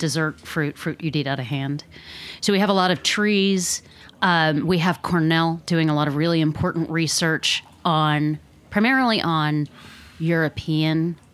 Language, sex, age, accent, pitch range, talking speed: English, female, 30-49, American, 155-180 Hz, 160 wpm